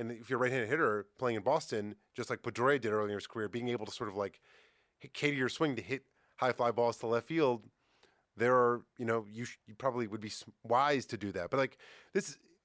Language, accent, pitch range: English, American, 115-140 Hz